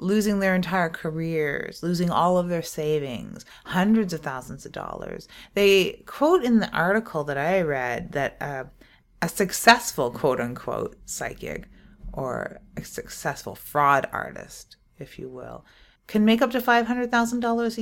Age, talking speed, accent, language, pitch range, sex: 30-49, 140 wpm, American, English, 160-215 Hz, female